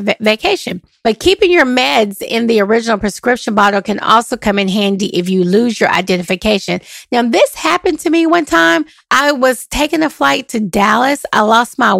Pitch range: 200-245 Hz